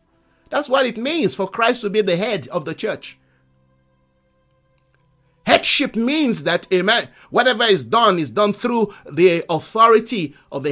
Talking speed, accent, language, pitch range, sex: 150 wpm, Nigerian, English, 160-235 Hz, male